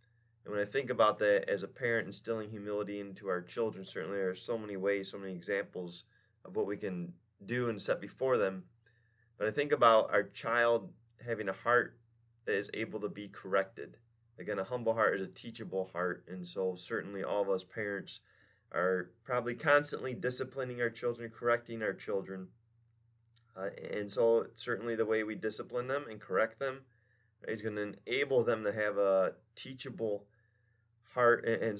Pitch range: 105-120 Hz